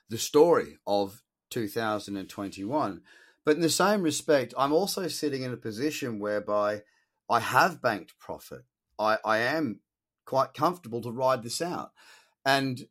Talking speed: 160 wpm